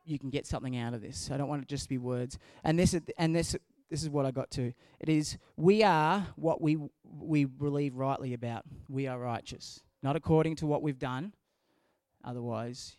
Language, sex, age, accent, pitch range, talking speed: English, male, 20-39, Australian, 130-155 Hz, 210 wpm